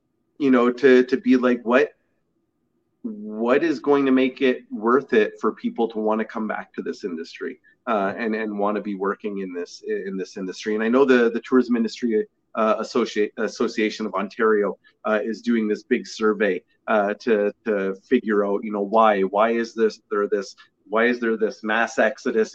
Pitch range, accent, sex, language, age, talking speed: 110-140 Hz, American, male, English, 30-49, 195 wpm